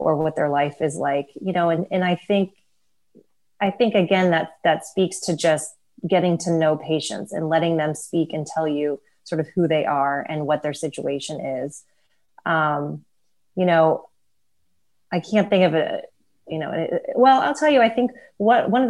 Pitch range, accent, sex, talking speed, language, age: 155-180 Hz, American, female, 190 wpm, English, 30-49